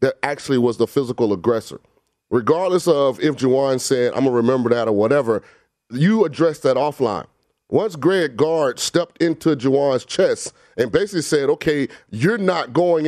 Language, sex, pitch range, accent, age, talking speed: English, male, 145-190 Hz, American, 30-49, 165 wpm